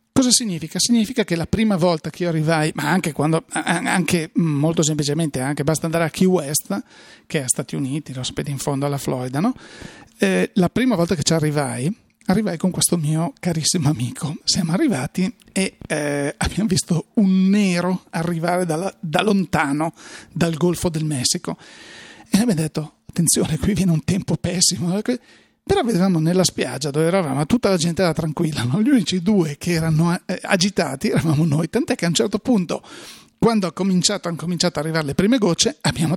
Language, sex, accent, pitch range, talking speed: Italian, male, native, 160-205 Hz, 180 wpm